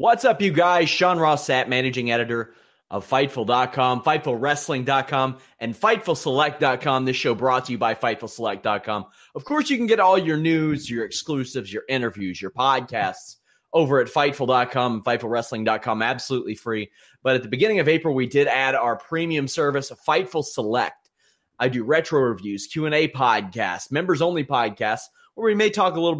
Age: 30-49